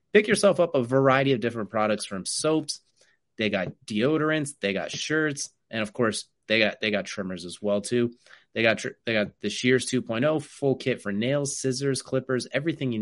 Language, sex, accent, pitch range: English, male, American, 105-140 Hz